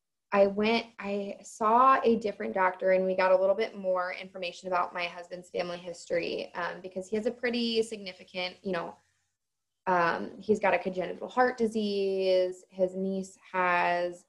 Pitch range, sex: 180-210 Hz, female